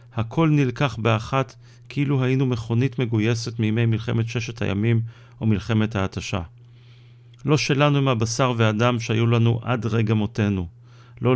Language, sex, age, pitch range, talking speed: Hebrew, male, 40-59, 115-130 Hz, 130 wpm